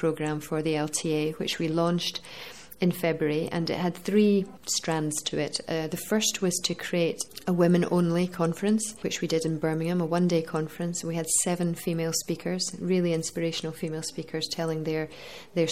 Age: 40-59